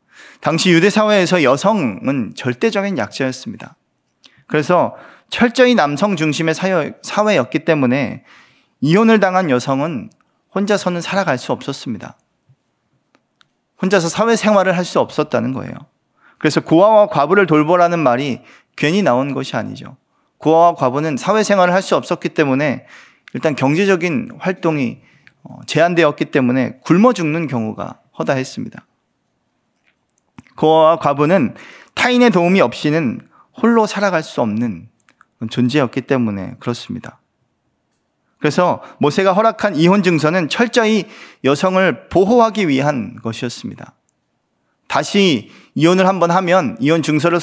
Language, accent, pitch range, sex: Korean, native, 145-200 Hz, male